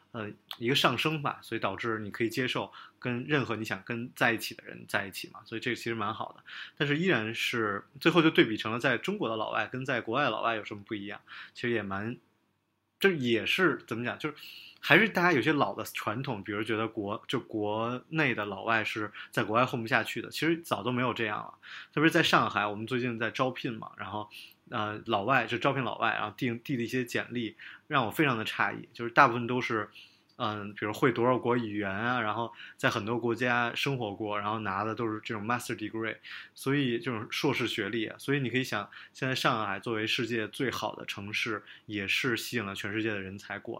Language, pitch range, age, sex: Chinese, 105-125 Hz, 20-39, male